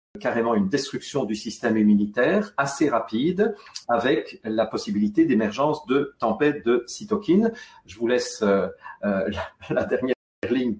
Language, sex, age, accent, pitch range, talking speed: French, male, 50-69, French, 120-190 Hz, 120 wpm